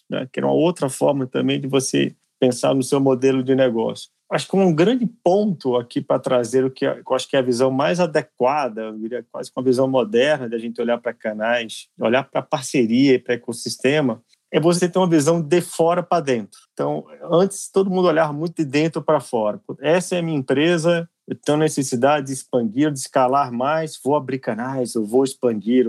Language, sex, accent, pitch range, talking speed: Portuguese, male, Brazilian, 125-170 Hz, 205 wpm